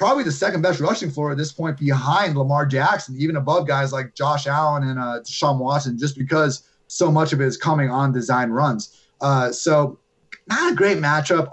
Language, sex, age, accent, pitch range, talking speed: English, male, 30-49, American, 130-160 Hz, 205 wpm